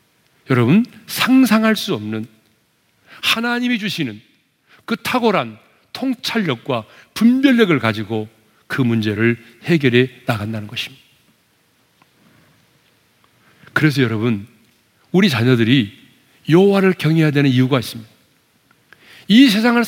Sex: male